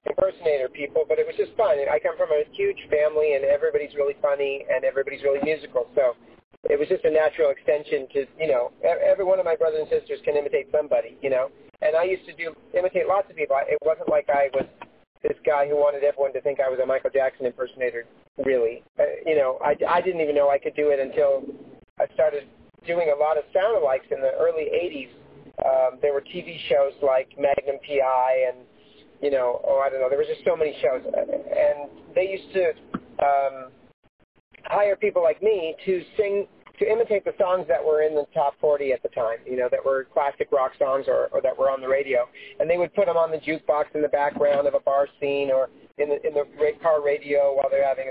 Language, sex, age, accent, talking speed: English, male, 40-59, American, 220 wpm